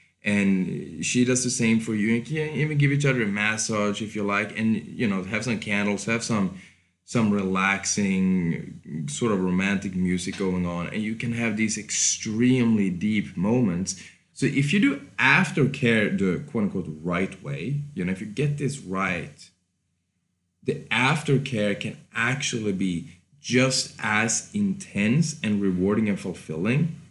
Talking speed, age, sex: 155 wpm, 20-39, male